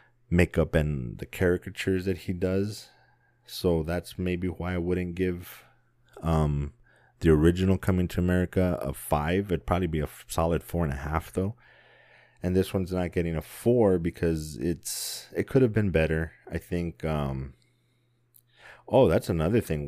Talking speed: 155 wpm